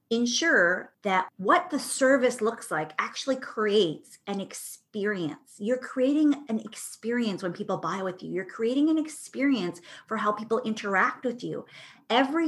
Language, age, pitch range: English, 30-49, 180-240 Hz